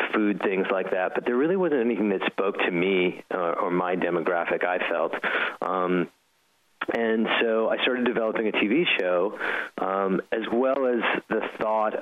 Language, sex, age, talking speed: English, male, 30-49, 170 wpm